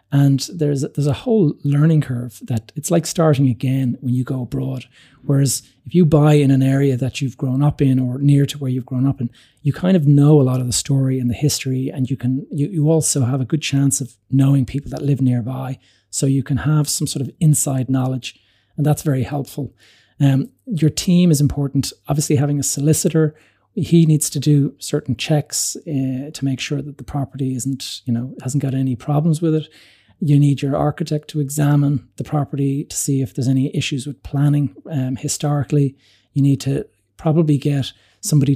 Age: 30-49